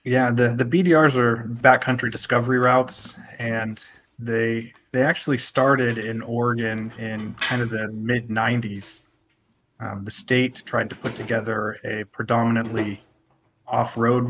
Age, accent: 30-49, American